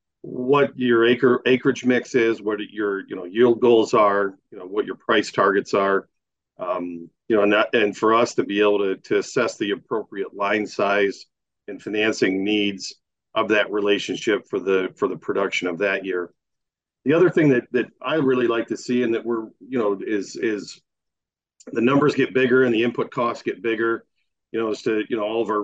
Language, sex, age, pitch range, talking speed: English, male, 50-69, 100-125 Hz, 205 wpm